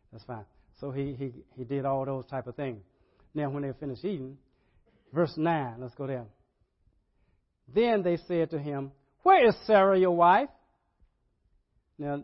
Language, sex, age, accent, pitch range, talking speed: English, male, 60-79, American, 130-195 Hz, 160 wpm